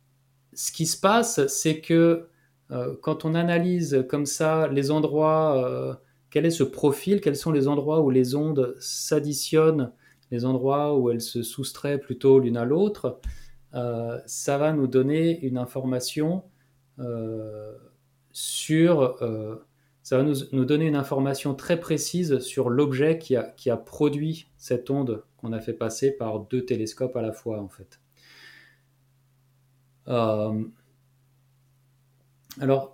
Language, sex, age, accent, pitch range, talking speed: French, male, 30-49, French, 120-145 Hz, 140 wpm